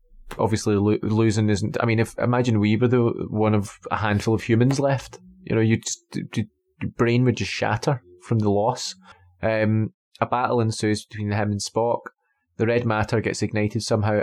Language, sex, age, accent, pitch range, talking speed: English, male, 20-39, British, 110-130 Hz, 180 wpm